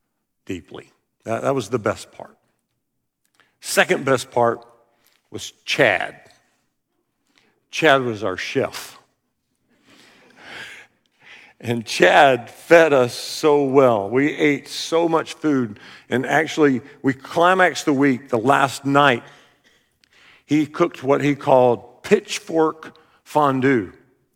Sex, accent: male, American